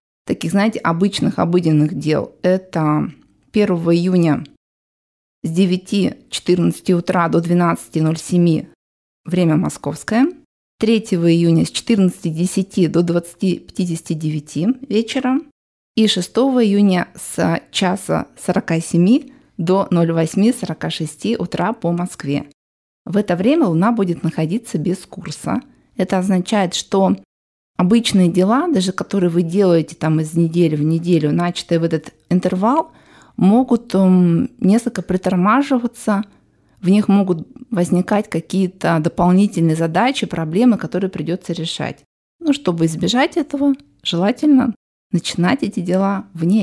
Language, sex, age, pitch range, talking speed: Russian, female, 20-39, 165-205 Hz, 105 wpm